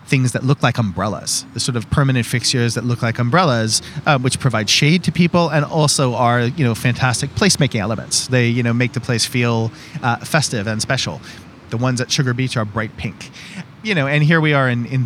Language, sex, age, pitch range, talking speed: English, male, 30-49, 120-145 Hz, 220 wpm